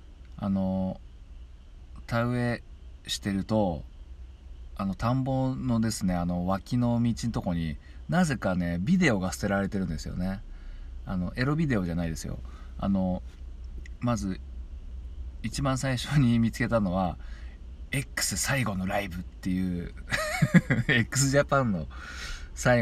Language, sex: Japanese, male